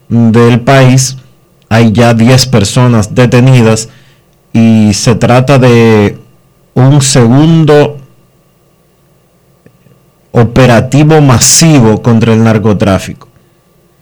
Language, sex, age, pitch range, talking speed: Spanish, male, 40-59, 110-130 Hz, 75 wpm